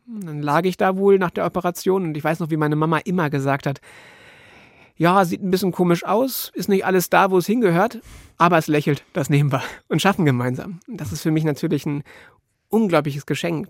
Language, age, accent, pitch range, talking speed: German, 30-49, German, 155-185 Hz, 210 wpm